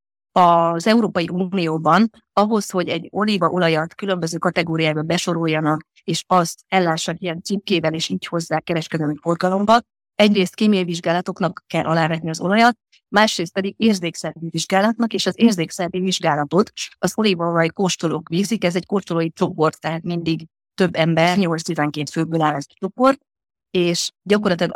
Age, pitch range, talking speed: 30-49, 160-190 Hz, 135 wpm